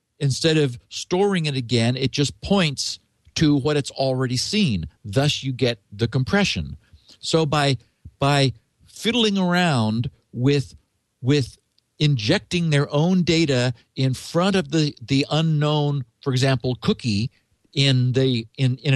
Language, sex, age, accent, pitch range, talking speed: English, male, 50-69, American, 120-160 Hz, 135 wpm